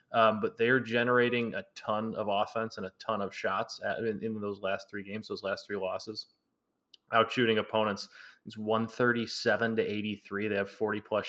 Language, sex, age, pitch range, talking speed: English, male, 20-39, 105-120 Hz, 180 wpm